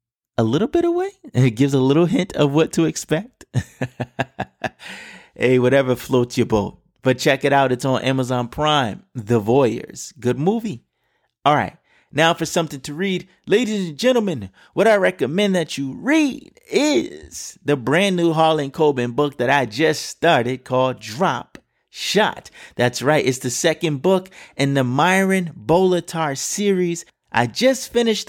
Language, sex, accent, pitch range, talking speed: English, male, American, 120-175 Hz, 155 wpm